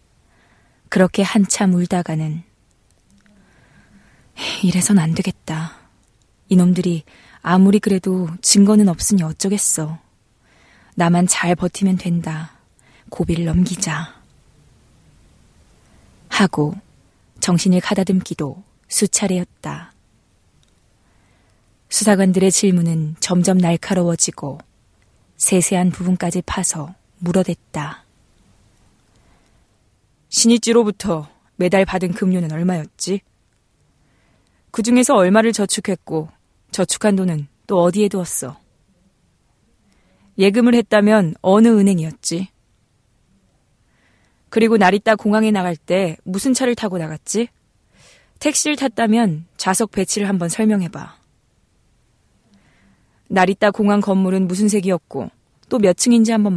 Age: 20-39